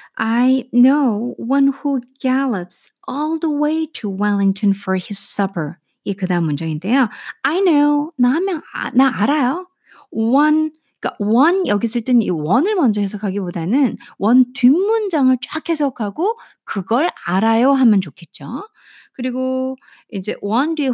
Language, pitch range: Korean, 200-290 Hz